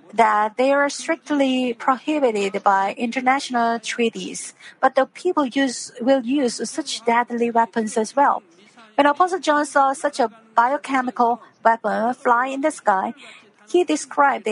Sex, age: female, 50-69